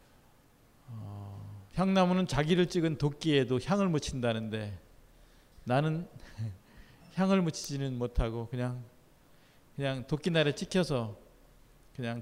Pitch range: 115-155 Hz